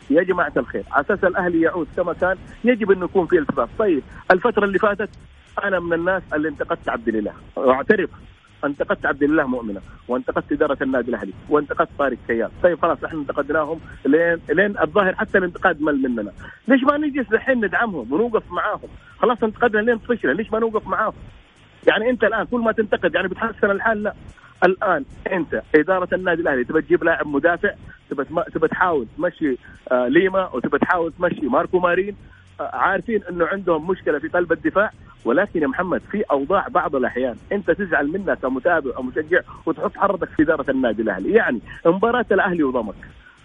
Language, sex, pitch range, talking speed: Arabic, male, 165-220 Hz, 165 wpm